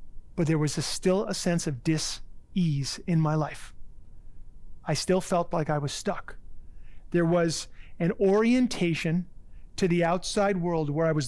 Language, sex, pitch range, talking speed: English, male, 140-175 Hz, 155 wpm